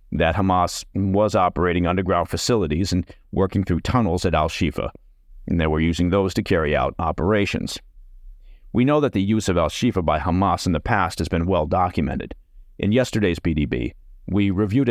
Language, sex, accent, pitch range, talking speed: English, male, American, 85-105 Hz, 170 wpm